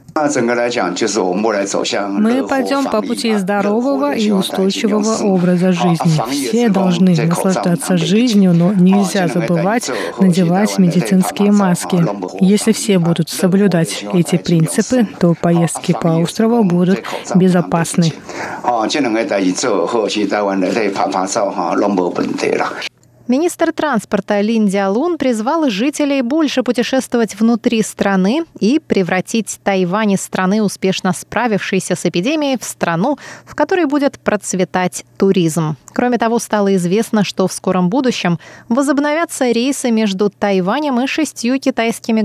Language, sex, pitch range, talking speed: Russian, male, 180-235 Hz, 100 wpm